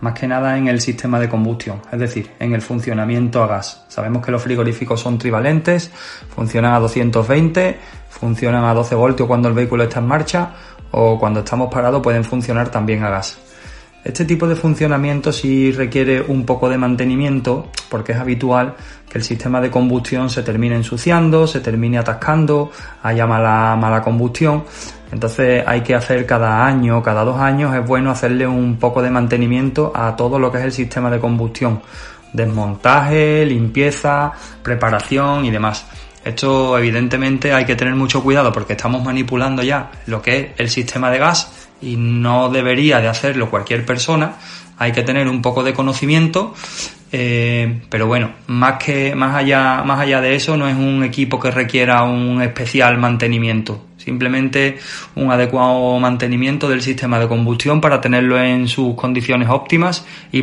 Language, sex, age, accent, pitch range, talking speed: Spanish, male, 20-39, Spanish, 120-135 Hz, 165 wpm